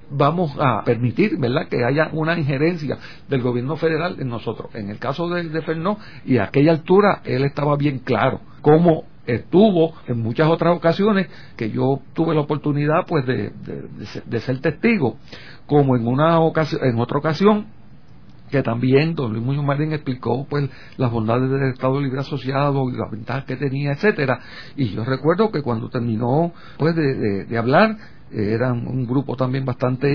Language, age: Spanish, 60-79